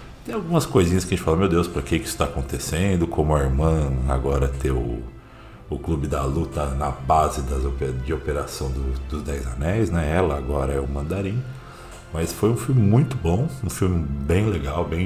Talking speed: 200 wpm